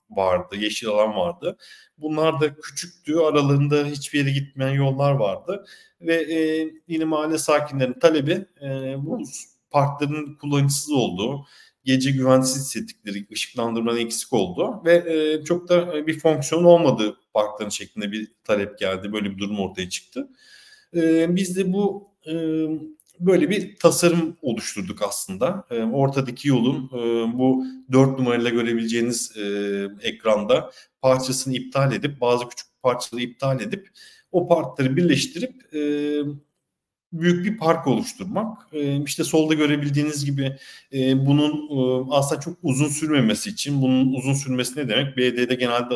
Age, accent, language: 40-59, native, Turkish